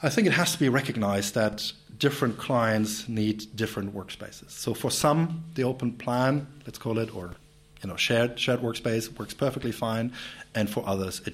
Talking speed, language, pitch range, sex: 185 wpm, English, 100-125 Hz, male